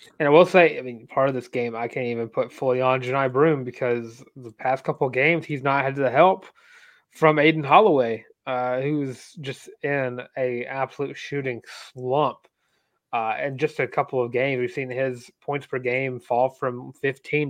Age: 20-39